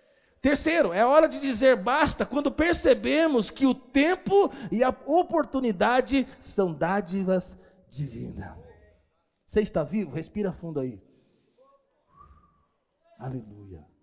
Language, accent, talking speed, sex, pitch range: Portuguese, Brazilian, 105 wpm, male, 200-285 Hz